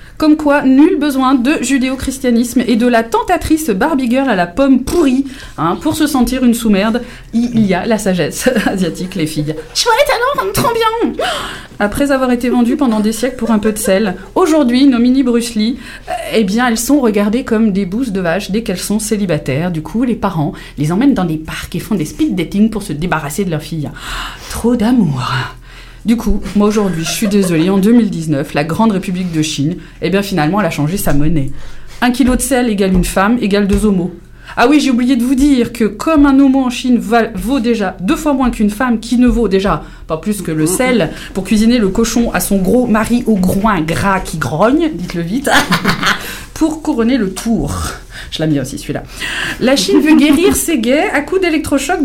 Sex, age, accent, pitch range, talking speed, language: female, 20-39, French, 185-265 Hz, 210 wpm, French